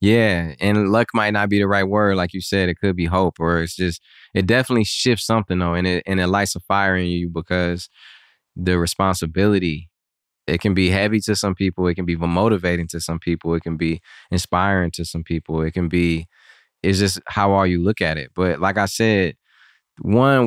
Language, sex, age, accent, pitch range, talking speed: English, male, 20-39, American, 90-110 Hz, 210 wpm